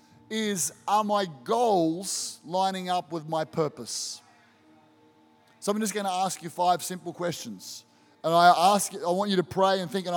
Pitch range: 150-195 Hz